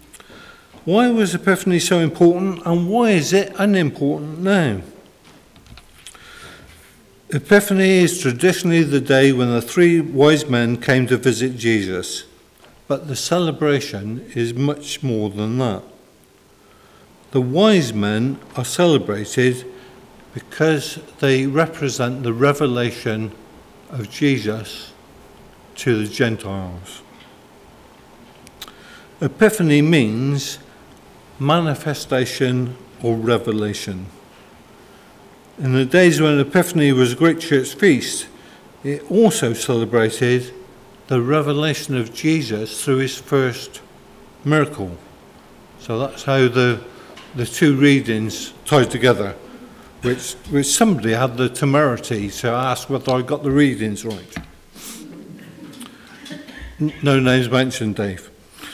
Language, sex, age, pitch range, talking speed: English, male, 50-69, 120-155 Hz, 105 wpm